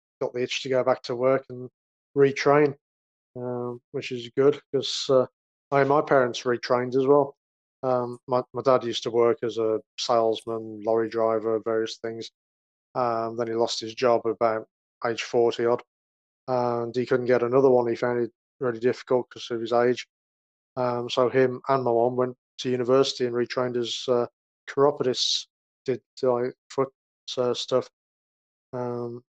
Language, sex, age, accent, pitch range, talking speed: English, male, 20-39, British, 115-125 Hz, 165 wpm